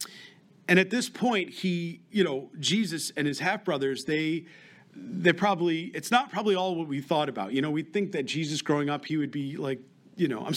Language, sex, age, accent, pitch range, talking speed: English, male, 40-59, American, 155-195 Hz, 215 wpm